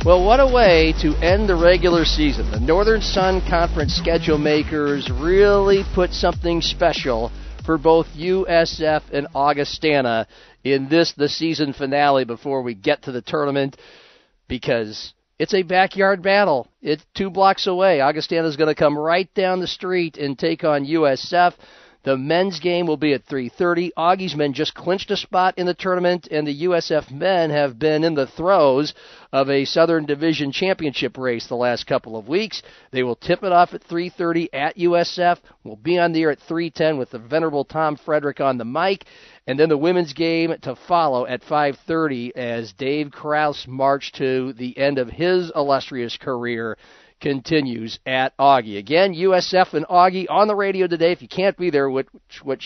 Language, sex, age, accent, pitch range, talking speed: English, male, 50-69, American, 135-175 Hz, 175 wpm